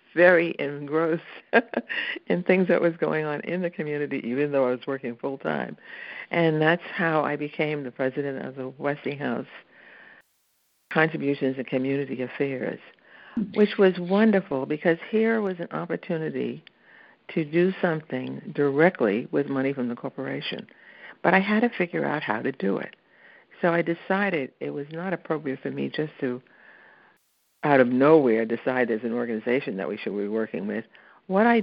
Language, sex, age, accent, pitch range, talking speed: English, female, 60-79, American, 135-175 Hz, 160 wpm